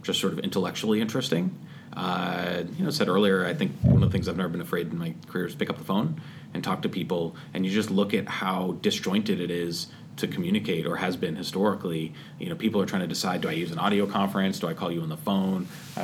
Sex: male